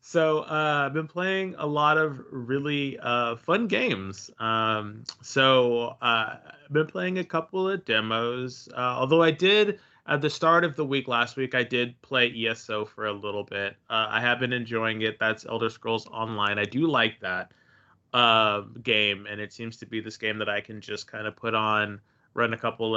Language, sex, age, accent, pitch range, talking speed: English, male, 20-39, American, 110-135 Hz, 200 wpm